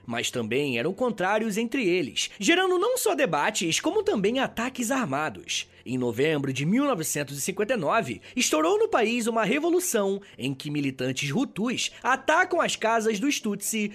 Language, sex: Portuguese, male